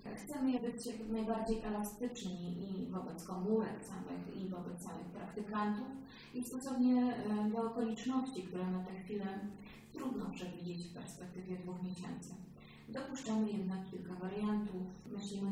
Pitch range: 185-225 Hz